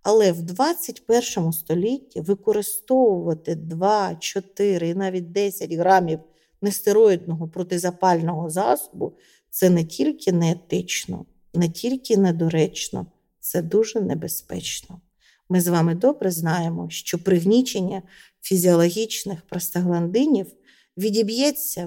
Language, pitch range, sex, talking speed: Ukrainian, 175-245 Hz, female, 95 wpm